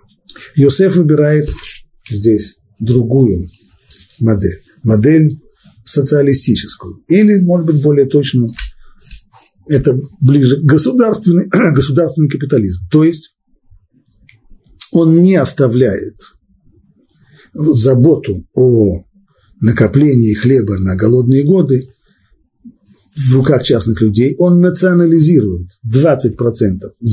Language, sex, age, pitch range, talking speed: Russian, male, 50-69, 105-155 Hz, 80 wpm